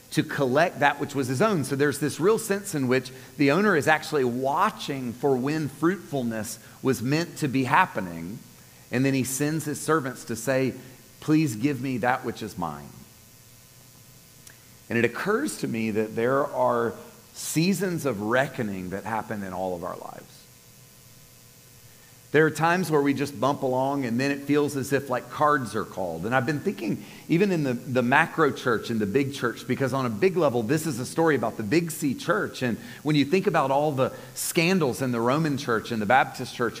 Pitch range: 120-155 Hz